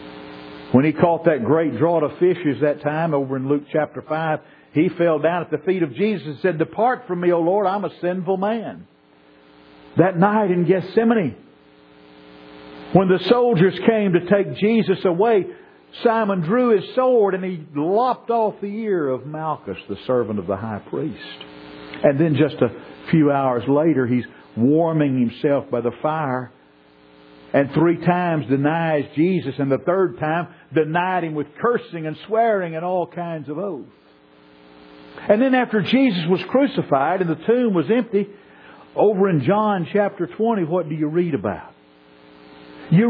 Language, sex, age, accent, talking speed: English, male, 50-69, American, 165 wpm